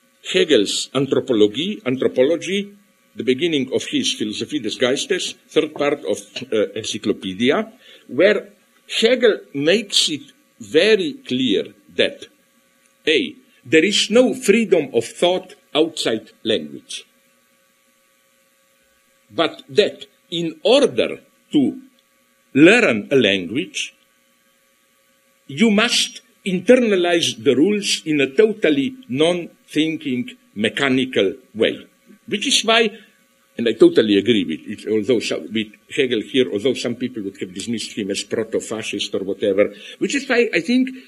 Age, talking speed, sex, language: 50-69, 120 wpm, male, English